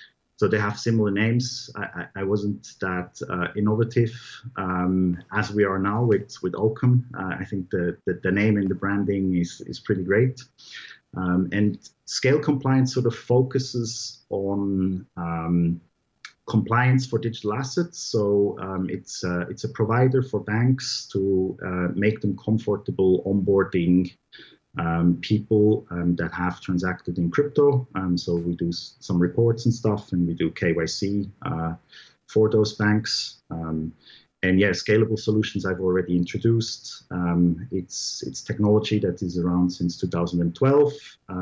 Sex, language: male, English